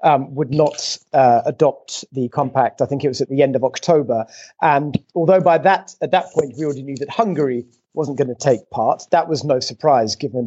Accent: British